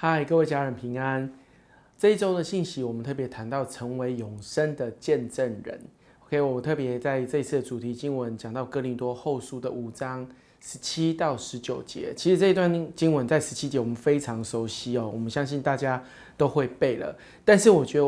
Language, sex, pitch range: Chinese, male, 125-160 Hz